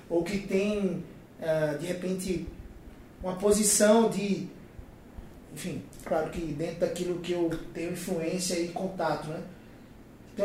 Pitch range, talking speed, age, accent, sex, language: 170-200 Hz, 120 wpm, 20-39, Brazilian, male, Portuguese